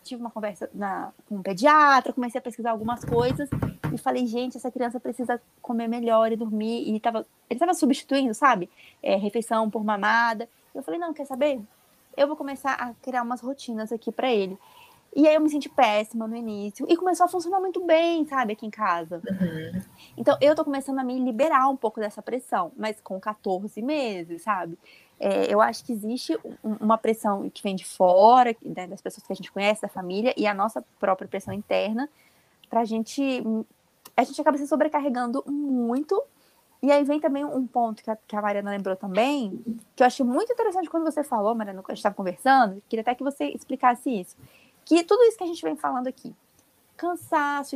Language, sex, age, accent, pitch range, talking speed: Portuguese, female, 20-39, Brazilian, 215-275 Hz, 195 wpm